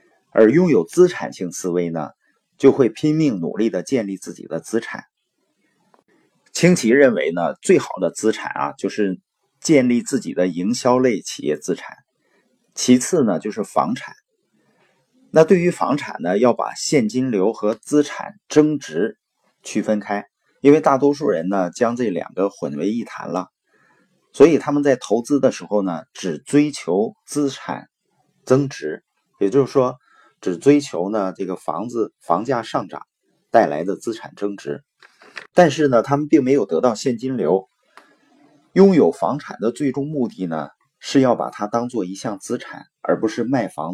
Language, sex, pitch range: Chinese, male, 100-150 Hz